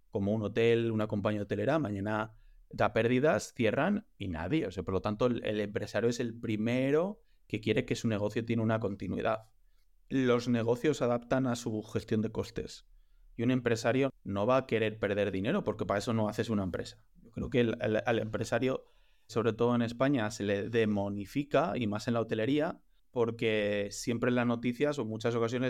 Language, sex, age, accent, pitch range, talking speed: Spanish, male, 30-49, Spanish, 110-125 Hz, 185 wpm